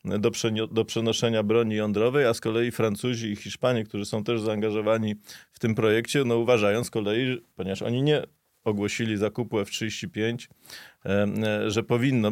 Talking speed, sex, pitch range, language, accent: 155 wpm, male, 105-125 Hz, Polish, native